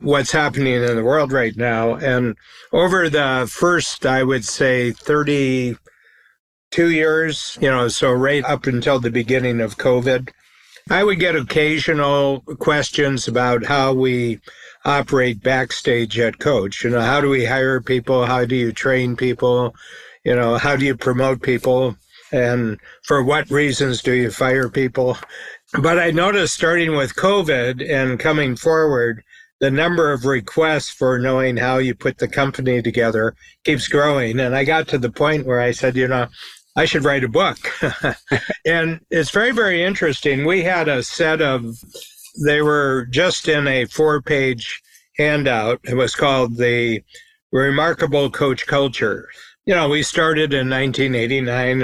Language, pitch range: English, 125-150 Hz